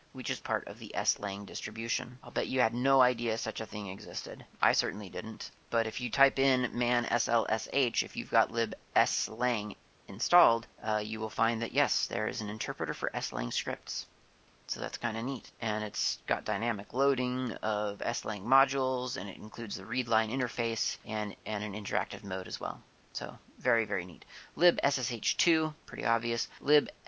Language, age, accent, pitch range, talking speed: English, 30-49, American, 105-130 Hz, 180 wpm